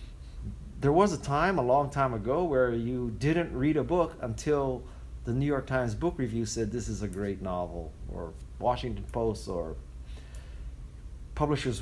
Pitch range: 100-140 Hz